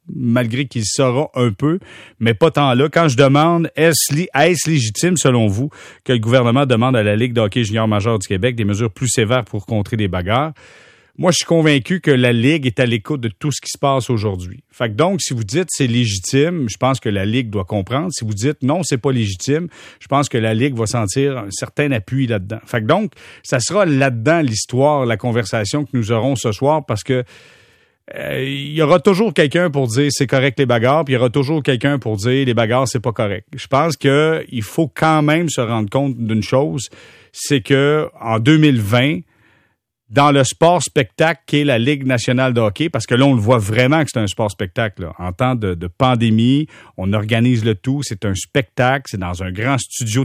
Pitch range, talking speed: 115-145 Hz, 220 wpm